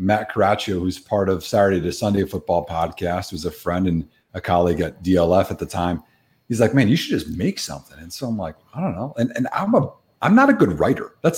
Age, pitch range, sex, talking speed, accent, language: 30-49, 95-130 Hz, male, 245 wpm, American, English